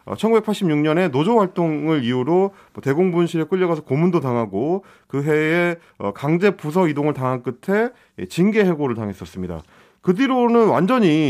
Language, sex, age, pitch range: Korean, male, 30-49, 135-190 Hz